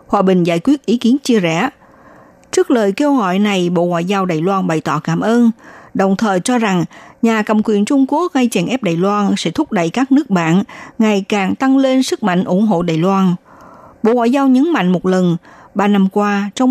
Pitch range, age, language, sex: 180-255 Hz, 60-79, Vietnamese, female